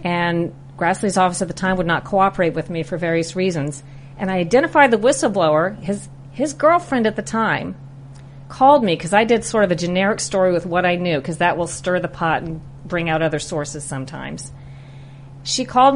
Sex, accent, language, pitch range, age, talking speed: female, American, English, 150-190 Hz, 40-59, 200 wpm